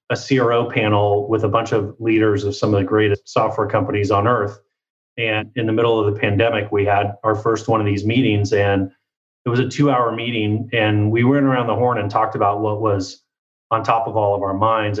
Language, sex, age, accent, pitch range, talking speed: English, male, 30-49, American, 105-135 Hz, 230 wpm